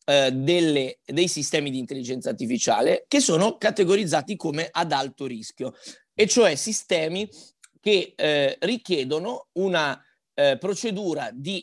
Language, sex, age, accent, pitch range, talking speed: Italian, male, 30-49, native, 140-180 Hz, 125 wpm